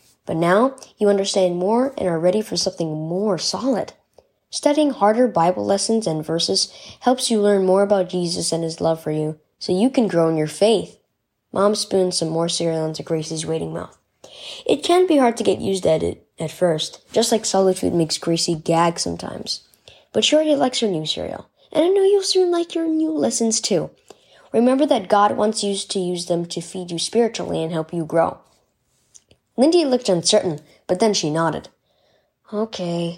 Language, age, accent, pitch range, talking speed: English, 10-29, American, 165-235 Hz, 190 wpm